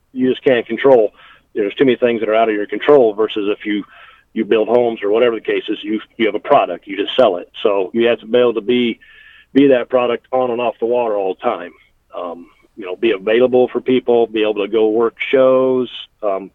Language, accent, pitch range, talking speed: English, American, 115-130 Hz, 245 wpm